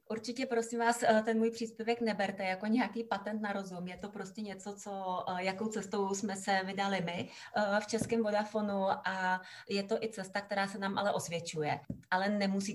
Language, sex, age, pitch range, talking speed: Czech, female, 30-49, 185-220 Hz, 180 wpm